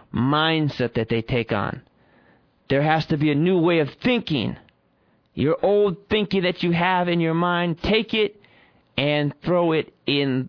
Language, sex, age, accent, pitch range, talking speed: English, male, 30-49, American, 120-160 Hz, 165 wpm